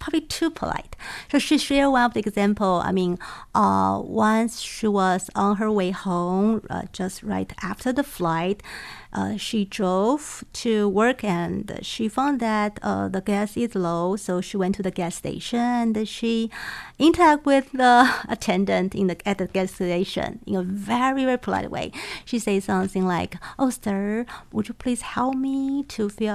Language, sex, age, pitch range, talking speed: English, female, 50-69, 195-245 Hz, 180 wpm